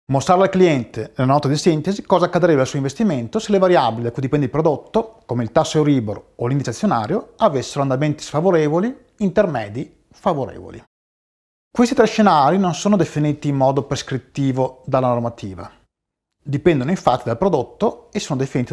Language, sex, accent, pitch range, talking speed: Italian, male, native, 130-175 Hz, 160 wpm